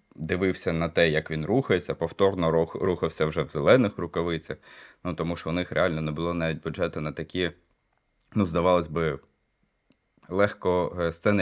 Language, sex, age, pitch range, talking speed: Ukrainian, male, 20-39, 80-90 Hz, 150 wpm